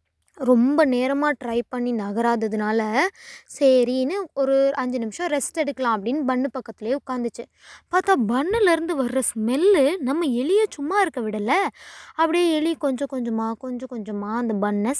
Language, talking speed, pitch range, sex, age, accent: Tamil, 130 wpm, 245-320 Hz, female, 20-39, native